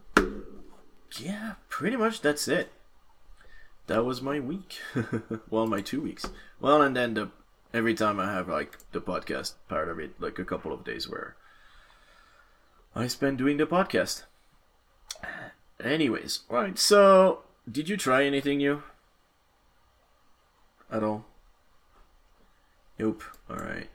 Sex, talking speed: male, 125 wpm